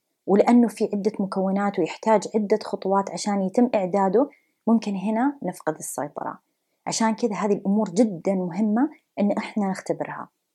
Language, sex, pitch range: English, female, 190-230 Hz